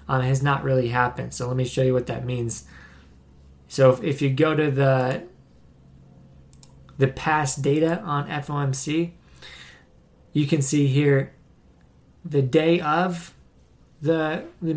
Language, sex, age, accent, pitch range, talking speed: English, male, 20-39, American, 130-155 Hz, 140 wpm